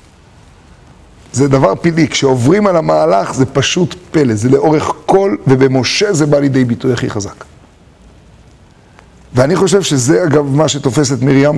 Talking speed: 135 wpm